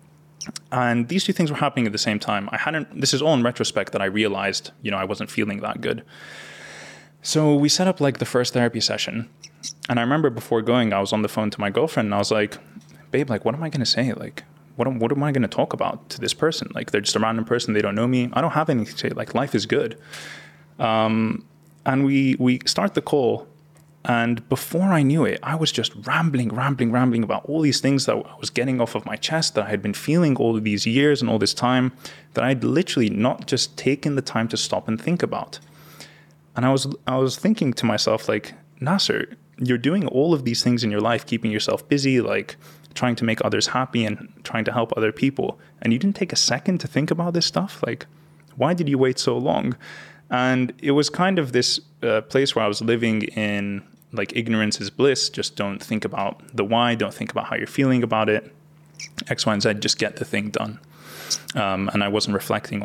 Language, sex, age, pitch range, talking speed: English, male, 20-39, 110-145 Hz, 235 wpm